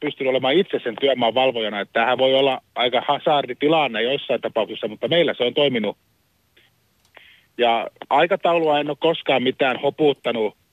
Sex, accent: male, native